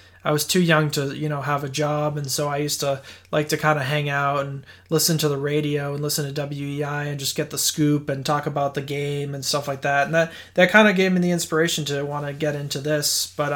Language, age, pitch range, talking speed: English, 20-39, 140-155 Hz, 265 wpm